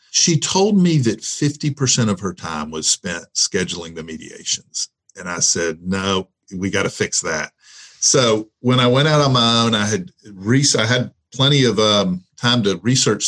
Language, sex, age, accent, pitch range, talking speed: English, male, 50-69, American, 100-125 Hz, 175 wpm